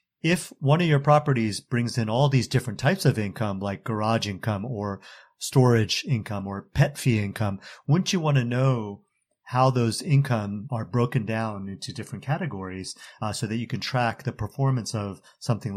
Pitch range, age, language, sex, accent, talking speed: 105-135 Hz, 30-49, English, male, American, 180 wpm